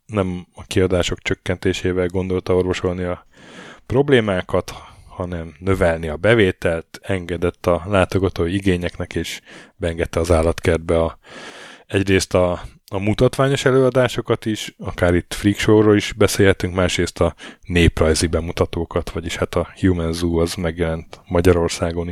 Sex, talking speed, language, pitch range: male, 120 wpm, Hungarian, 85-100 Hz